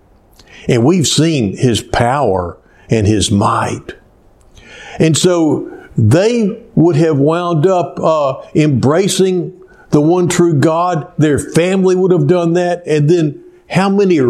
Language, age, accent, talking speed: English, 60-79, American, 130 wpm